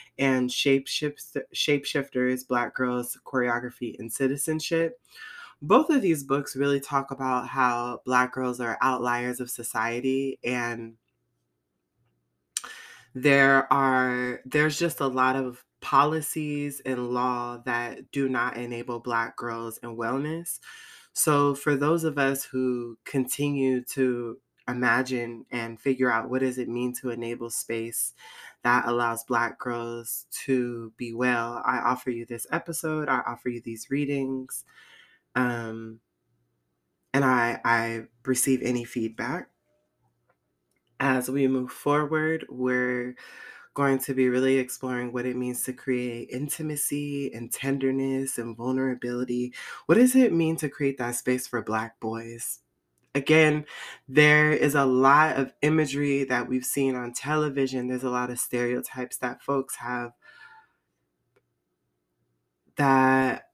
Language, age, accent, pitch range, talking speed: English, 20-39, American, 120-140 Hz, 130 wpm